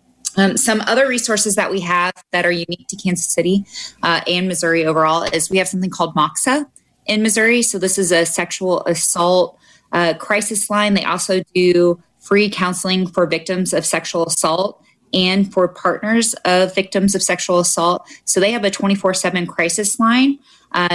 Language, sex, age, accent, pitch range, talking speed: English, female, 20-39, American, 175-205 Hz, 170 wpm